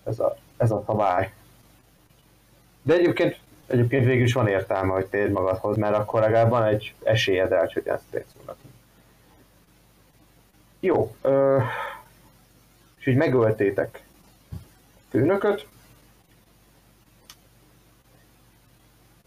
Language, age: Hungarian, 30-49